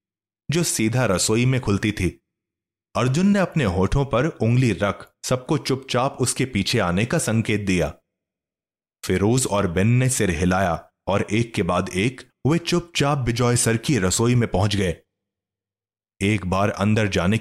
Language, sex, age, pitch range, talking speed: Hindi, male, 30-49, 95-125 Hz, 155 wpm